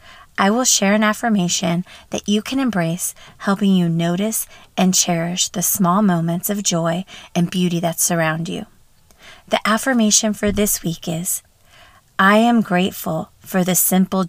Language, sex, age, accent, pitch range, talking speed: English, female, 30-49, American, 170-205 Hz, 150 wpm